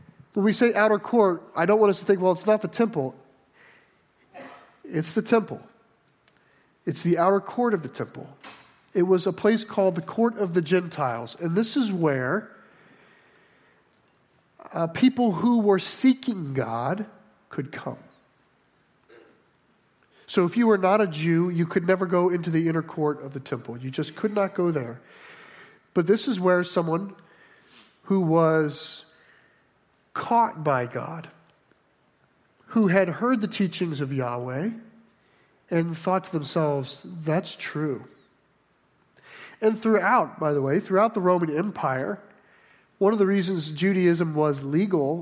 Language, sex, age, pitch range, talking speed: English, male, 40-59, 155-195 Hz, 145 wpm